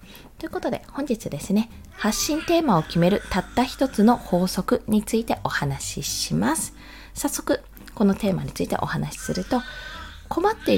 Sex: female